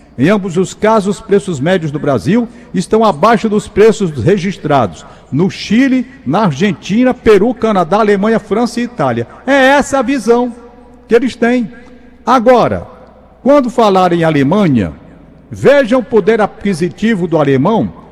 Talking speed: 135 wpm